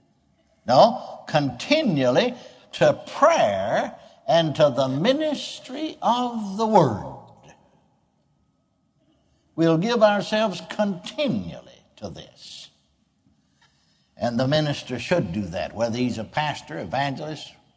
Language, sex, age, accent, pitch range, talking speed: English, male, 60-79, American, 135-210 Hz, 95 wpm